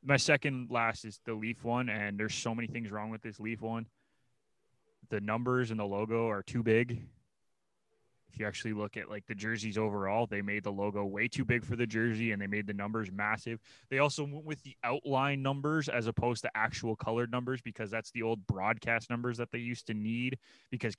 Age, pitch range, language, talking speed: 20-39, 110-125 Hz, English, 215 wpm